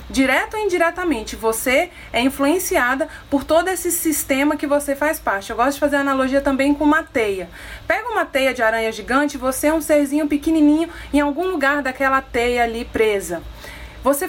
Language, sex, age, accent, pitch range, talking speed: Portuguese, female, 20-39, Brazilian, 215-290 Hz, 175 wpm